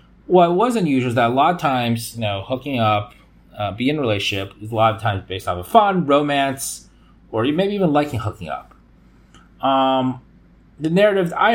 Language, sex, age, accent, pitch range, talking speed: English, male, 30-49, American, 110-145 Hz, 195 wpm